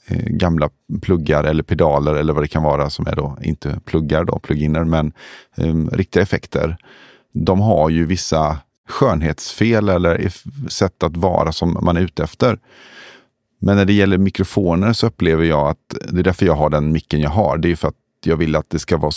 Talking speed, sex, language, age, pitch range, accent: 195 wpm, male, Swedish, 30-49, 75-90 Hz, native